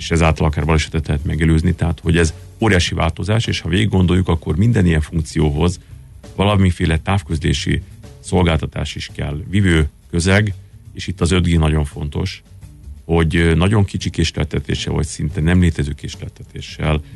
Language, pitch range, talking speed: Hungarian, 80-95 Hz, 145 wpm